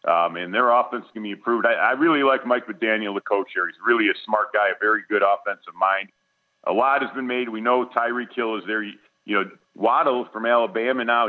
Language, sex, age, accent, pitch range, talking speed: English, male, 40-59, American, 100-120 Hz, 235 wpm